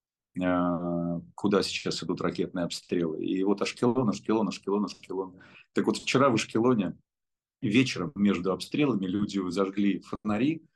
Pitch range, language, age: 90-105 Hz, Russian, 30-49